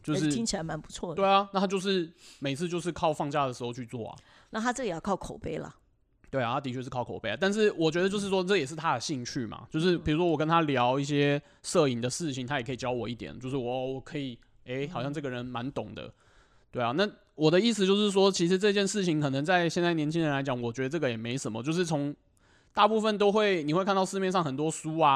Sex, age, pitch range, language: male, 20-39, 130-175 Hz, Chinese